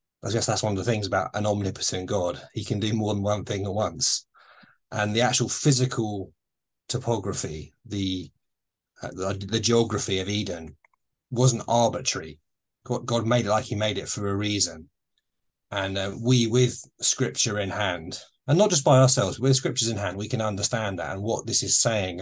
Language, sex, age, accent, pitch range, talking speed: English, male, 30-49, British, 100-125 Hz, 190 wpm